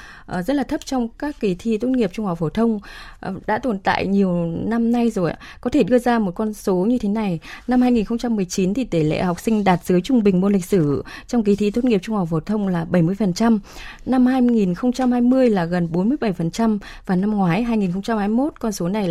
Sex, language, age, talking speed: female, Vietnamese, 20-39, 225 wpm